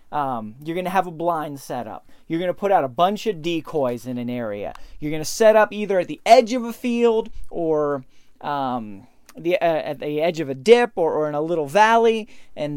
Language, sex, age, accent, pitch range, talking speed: English, male, 30-49, American, 150-210 Hz, 230 wpm